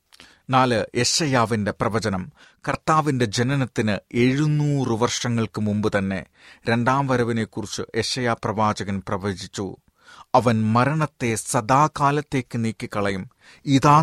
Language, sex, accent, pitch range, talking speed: Malayalam, male, native, 110-135 Hz, 80 wpm